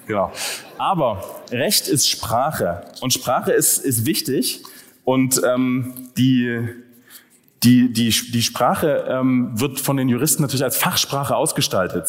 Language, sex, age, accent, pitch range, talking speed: German, male, 30-49, German, 120-155 Hz, 130 wpm